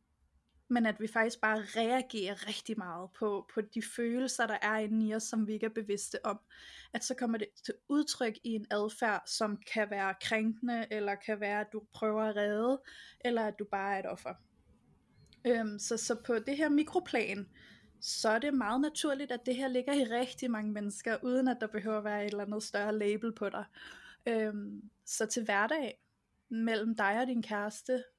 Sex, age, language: female, 20-39, Danish